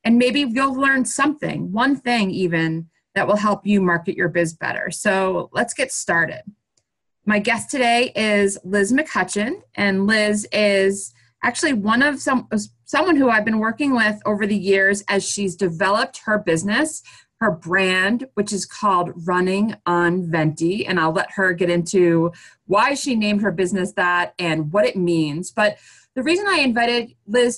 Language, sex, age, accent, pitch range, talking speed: English, female, 30-49, American, 180-235 Hz, 170 wpm